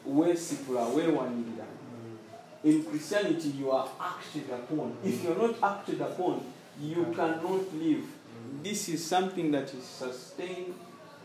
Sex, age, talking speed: male, 50-69, 135 wpm